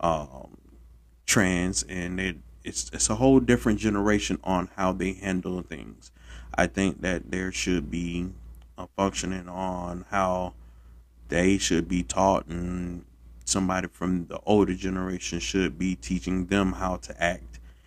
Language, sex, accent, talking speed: English, male, American, 140 wpm